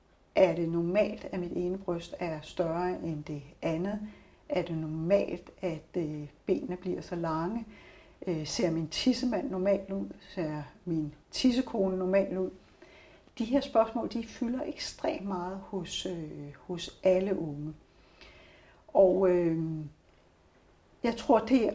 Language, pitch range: Danish, 170-210 Hz